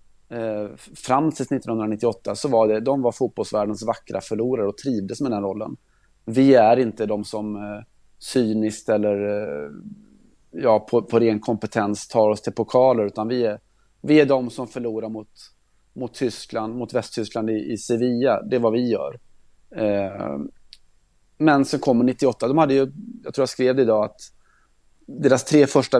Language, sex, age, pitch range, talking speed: Swedish, male, 30-49, 105-125 Hz, 175 wpm